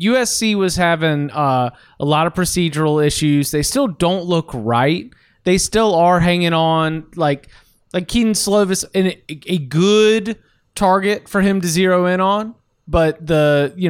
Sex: male